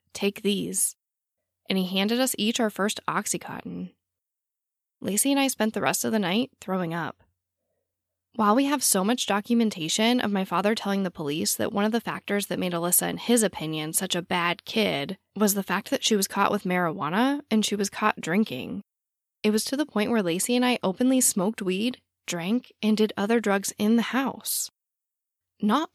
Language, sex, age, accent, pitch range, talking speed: English, female, 10-29, American, 185-235 Hz, 190 wpm